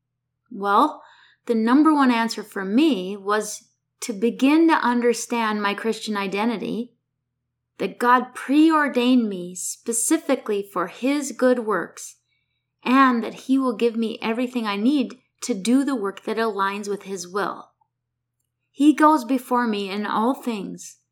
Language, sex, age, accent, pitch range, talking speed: English, female, 30-49, American, 195-250 Hz, 140 wpm